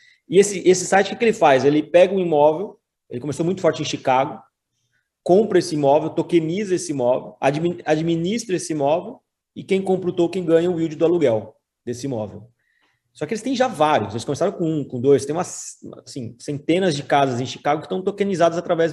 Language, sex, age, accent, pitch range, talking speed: Portuguese, male, 20-39, Brazilian, 145-185 Hz, 200 wpm